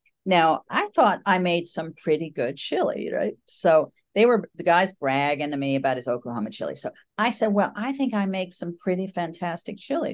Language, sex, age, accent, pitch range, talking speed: English, female, 50-69, American, 130-185 Hz, 200 wpm